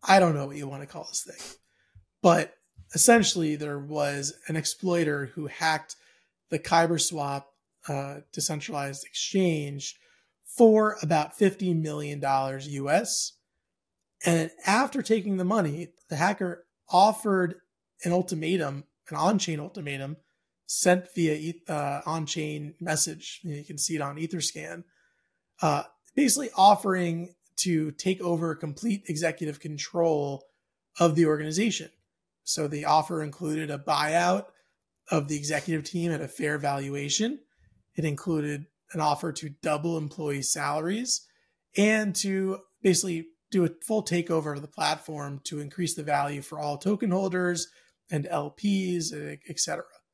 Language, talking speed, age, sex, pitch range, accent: English, 130 wpm, 30-49, male, 150-185 Hz, American